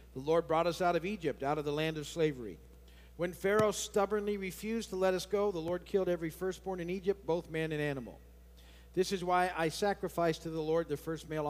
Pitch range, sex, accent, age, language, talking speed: 135-185 Hz, male, American, 50-69, English, 225 wpm